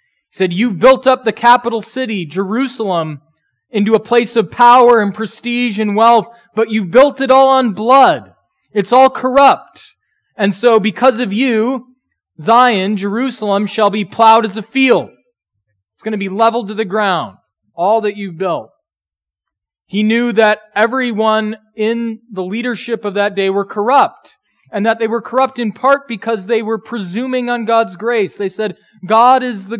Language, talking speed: English, 170 wpm